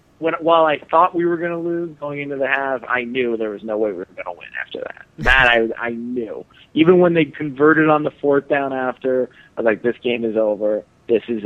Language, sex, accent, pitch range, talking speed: English, male, American, 115-150 Hz, 250 wpm